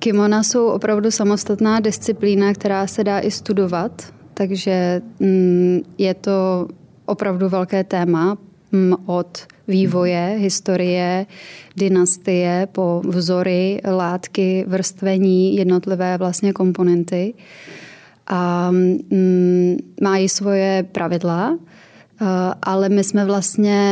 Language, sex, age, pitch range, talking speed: Czech, female, 20-39, 180-200 Hz, 90 wpm